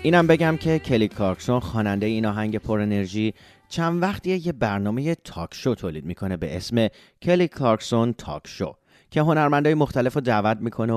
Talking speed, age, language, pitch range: 170 wpm, 30-49, English, 95-130 Hz